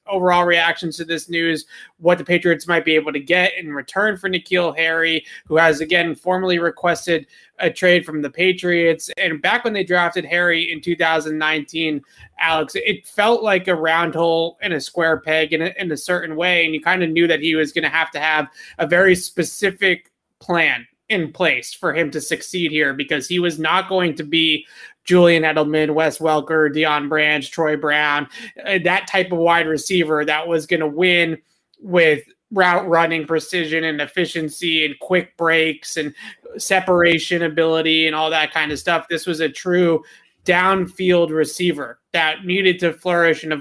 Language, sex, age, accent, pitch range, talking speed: English, male, 20-39, American, 155-180 Hz, 180 wpm